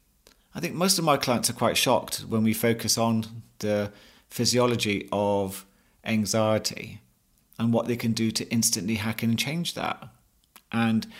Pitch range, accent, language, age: 105-120 Hz, British, English, 40-59